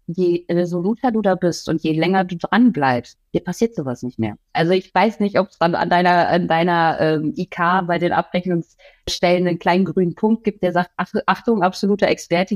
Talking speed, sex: 195 wpm, female